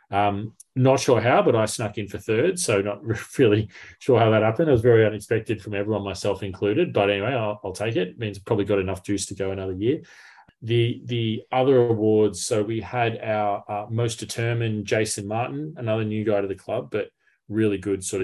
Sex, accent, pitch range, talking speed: male, Australian, 95-110 Hz, 205 wpm